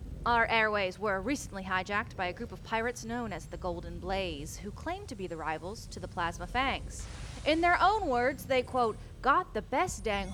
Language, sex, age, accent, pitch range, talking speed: English, female, 30-49, American, 215-295 Hz, 205 wpm